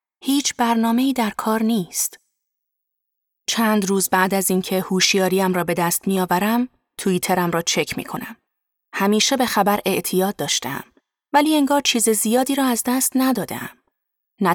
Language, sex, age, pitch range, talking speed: Persian, female, 30-49, 185-235 Hz, 145 wpm